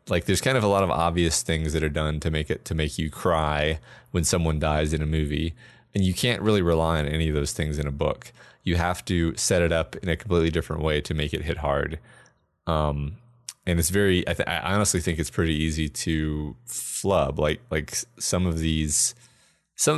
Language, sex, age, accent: English, male, 30-49, American